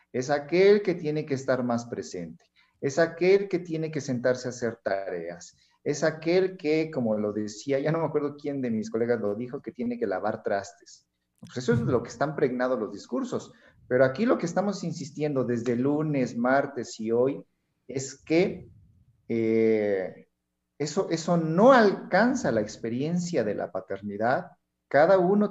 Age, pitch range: 50-69, 115-160 Hz